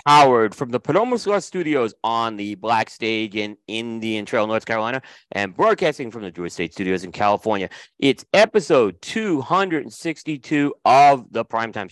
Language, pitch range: English, 100-130 Hz